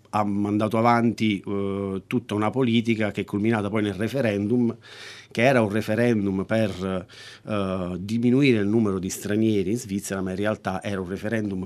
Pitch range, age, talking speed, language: 95-115 Hz, 40-59, 155 wpm, Italian